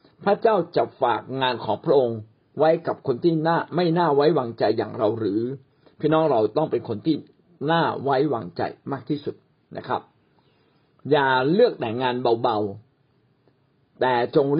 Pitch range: 125-160 Hz